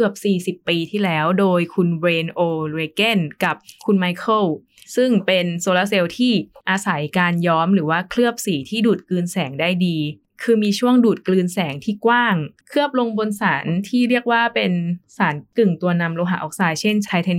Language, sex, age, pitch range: Thai, female, 20-39, 165-205 Hz